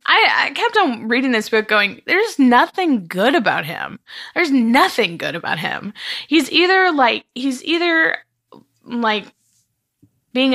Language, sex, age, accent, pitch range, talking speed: English, female, 20-39, American, 205-265 Hz, 140 wpm